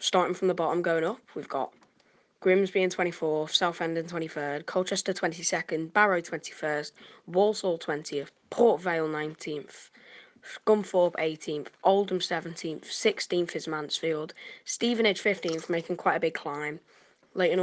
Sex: female